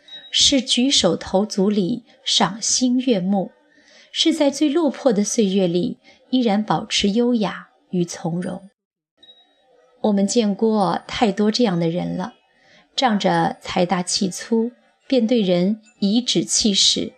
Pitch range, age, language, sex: 190-260 Hz, 30-49, Chinese, female